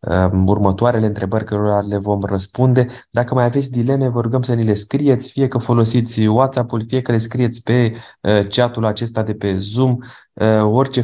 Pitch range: 105-125 Hz